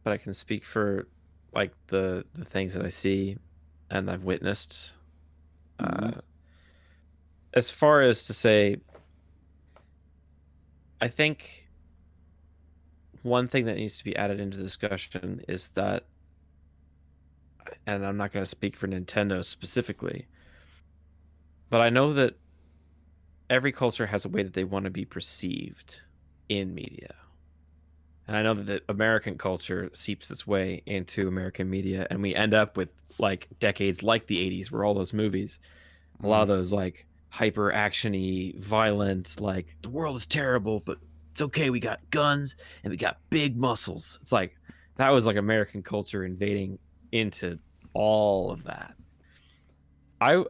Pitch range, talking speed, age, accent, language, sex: 75-105 Hz, 145 wpm, 30-49, American, English, male